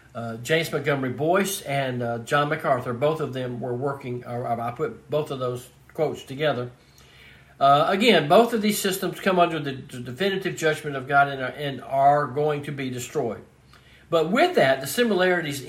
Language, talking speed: English, 170 wpm